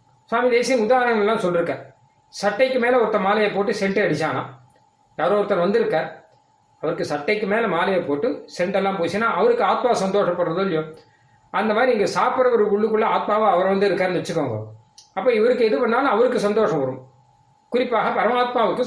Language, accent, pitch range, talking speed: Tamil, native, 185-235 Hz, 135 wpm